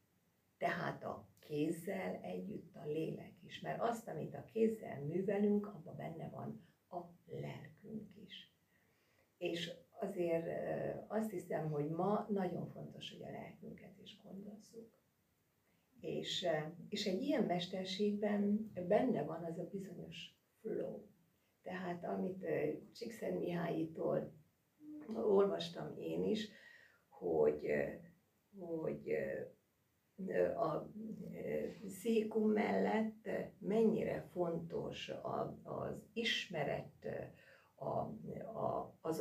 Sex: female